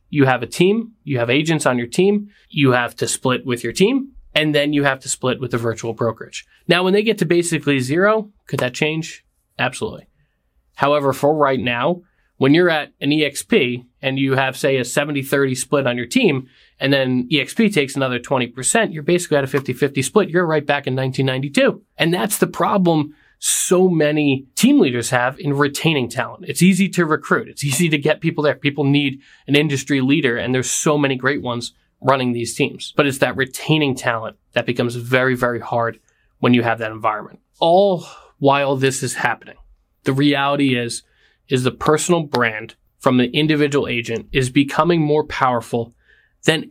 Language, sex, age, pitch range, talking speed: English, male, 20-39, 125-155 Hz, 190 wpm